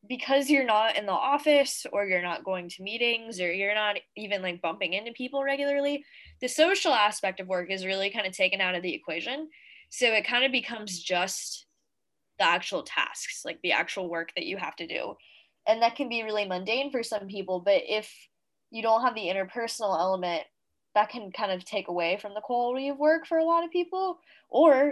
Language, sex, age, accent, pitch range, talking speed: English, female, 10-29, American, 195-270 Hz, 210 wpm